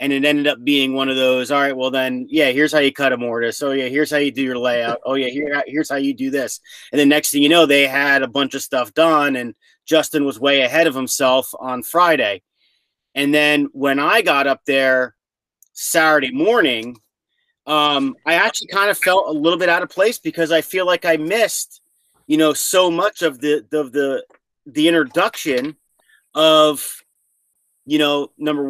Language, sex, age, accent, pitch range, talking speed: English, male, 30-49, American, 135-160 Hz, 205 wpm